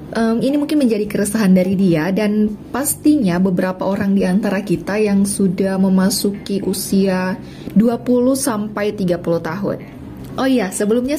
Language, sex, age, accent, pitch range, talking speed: Indonesian, female, 20-39, native, 185-220 Hz, 125 wpm